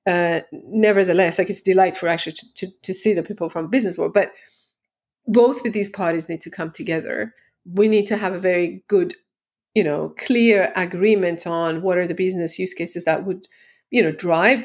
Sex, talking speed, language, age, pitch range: female, 195 wpm, English, 40-59, 170-210 Hz